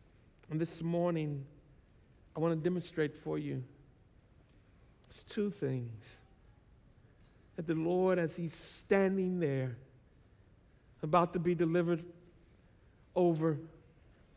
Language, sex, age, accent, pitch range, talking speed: English, male, 60-79, American, 120-175 Hz, 90 wpm